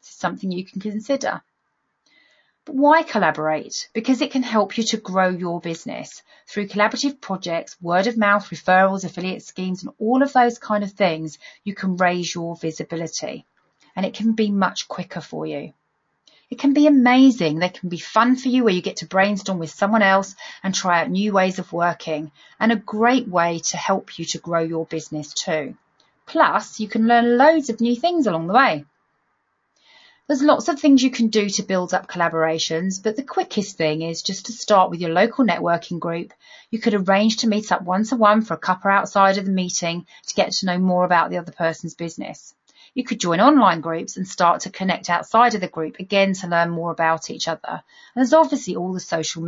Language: English